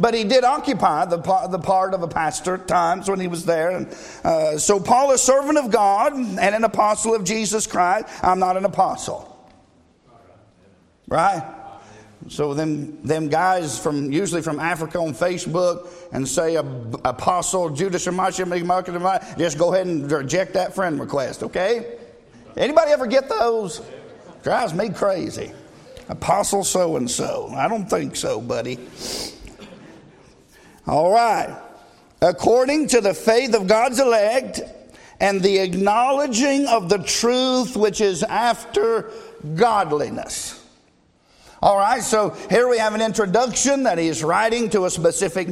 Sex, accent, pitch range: male, American, 175-230 Hz